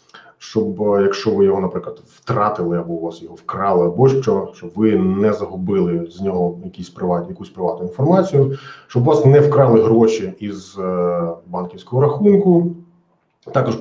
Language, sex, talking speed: Ukrainian, male, 150 wpm